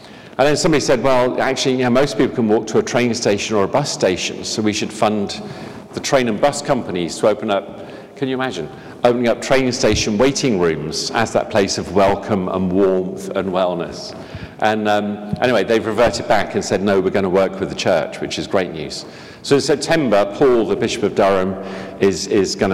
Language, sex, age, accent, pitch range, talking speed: English, male, 50-69, British, 95-120 Hz, 215 wpm